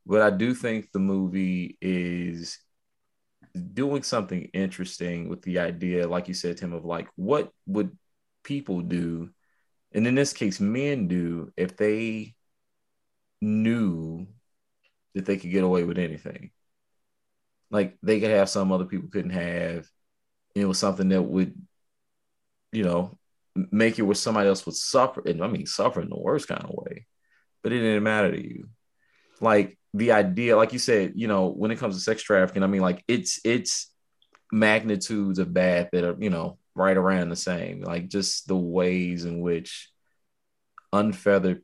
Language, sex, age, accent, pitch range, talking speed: English, male, 30-49, American, 90-105 Hz, 165 wpm